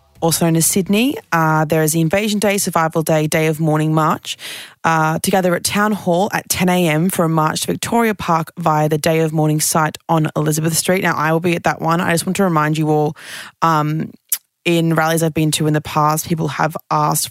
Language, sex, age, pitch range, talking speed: English, female, 20-39, 155-185 Hz, 220 wpm